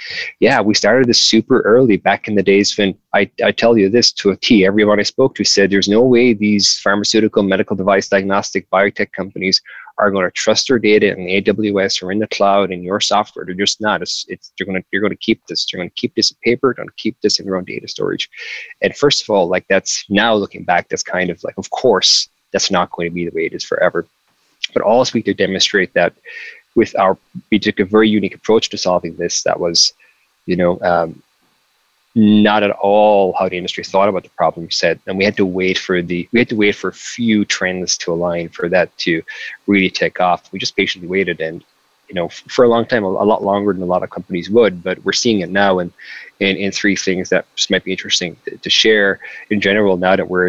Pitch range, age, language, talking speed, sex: 95-110 Hz, 20-39, English, 240 wpm, male